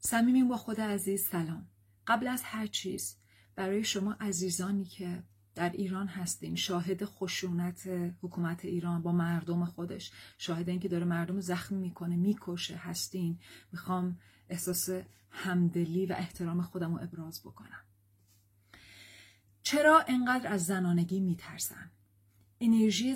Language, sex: Persian, female